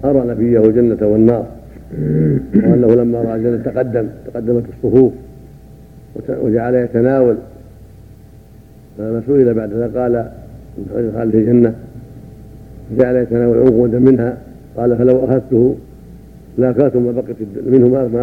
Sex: male